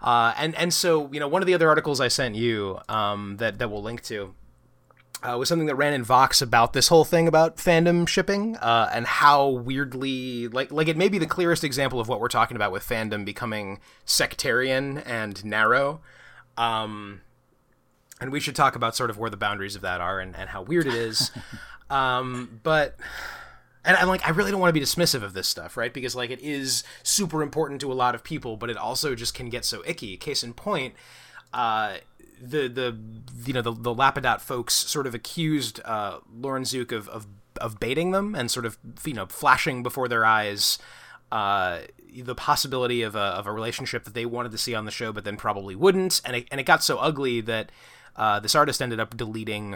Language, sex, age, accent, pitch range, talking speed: English, male, 20-39, American, 115-145 Hz, 215 wpm